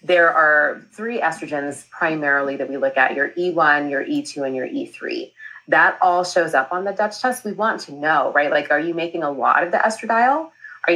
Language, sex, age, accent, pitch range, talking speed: English, female, 30-49, American, 155-230 Hz, 215 wpm